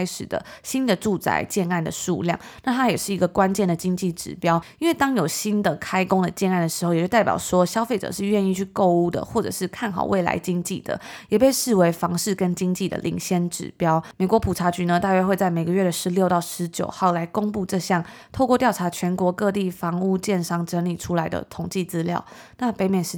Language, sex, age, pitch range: Chinese, female, 20-39, 175-205 Hz